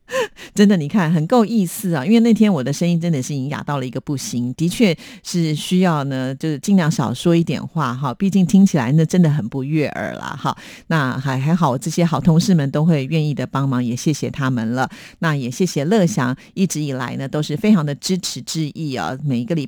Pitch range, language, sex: 145-205 Hz, Chinese, female